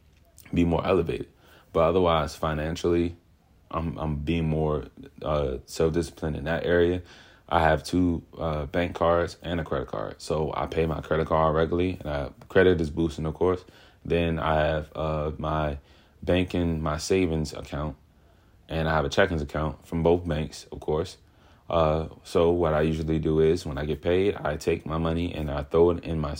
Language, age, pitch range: English, 30-49, 75-85 Hz